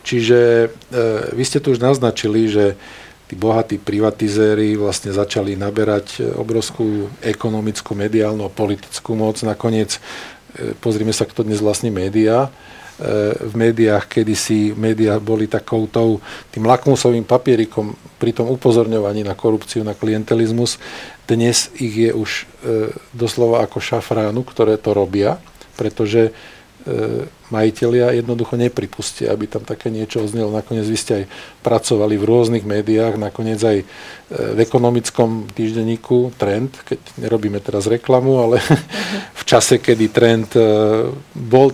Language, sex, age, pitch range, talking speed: Slovak, male, 50-69, 110-120 Hz, 130 wpm